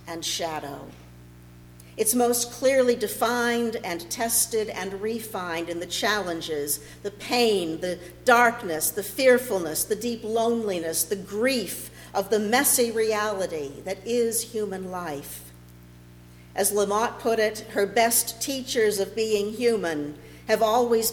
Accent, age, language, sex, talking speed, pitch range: American, 50-69, English, female, 125 wpm, 150-225 Hz